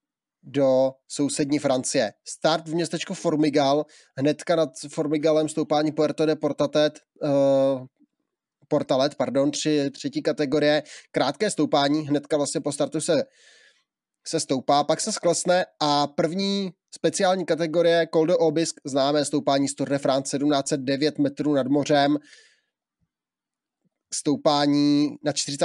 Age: 20-39